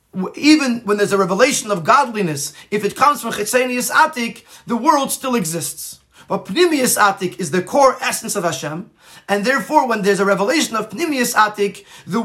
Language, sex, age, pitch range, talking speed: English, male, 30-49, 185-240 Hz, 175 wpm